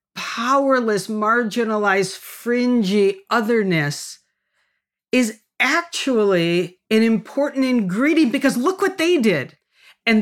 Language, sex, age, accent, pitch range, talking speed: English, female, 50-69, American, 185-250 Hz, 90 wpm